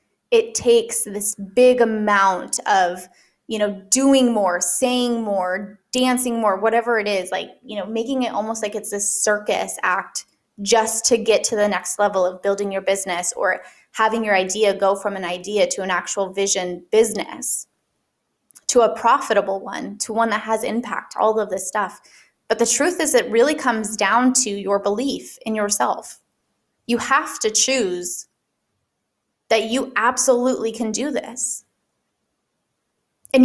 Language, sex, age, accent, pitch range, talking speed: English, female, 20-39, American, 205-245 Hz, 160 wpm